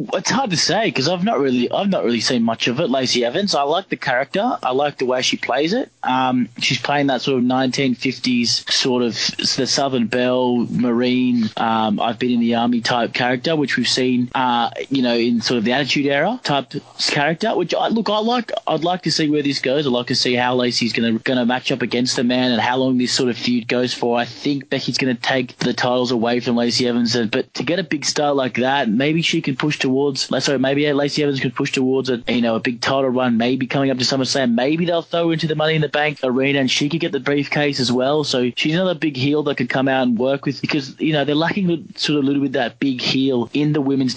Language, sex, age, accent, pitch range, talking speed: English, male, 20-39, Australian, 125-145 Hz, 260 wpm